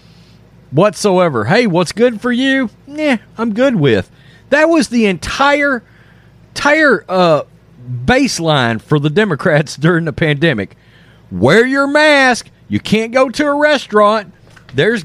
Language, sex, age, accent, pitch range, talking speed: English, male, 40-59, American, 150-235 Hz, 130 wpm